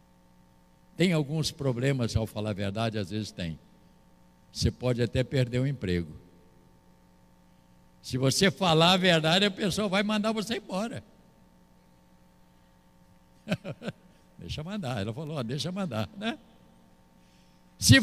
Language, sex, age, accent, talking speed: Portuguese, male, 60-79, Brazilian, 115 wpm